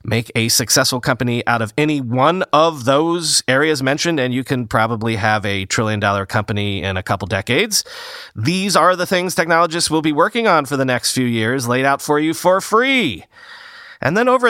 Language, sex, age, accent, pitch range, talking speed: English, male, 30-49, American, 110-165 Hz, 195 wpm